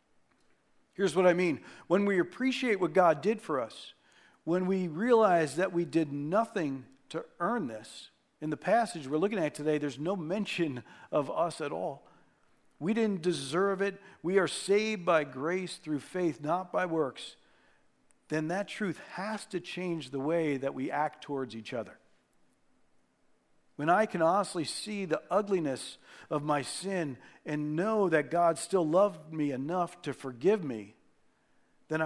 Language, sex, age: English, male, 50-69